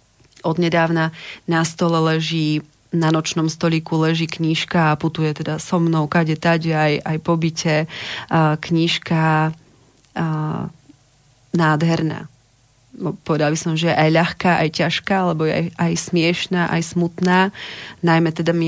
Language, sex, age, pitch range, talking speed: Slovak, female, 30-49, 155-165 Hz, 135 wpm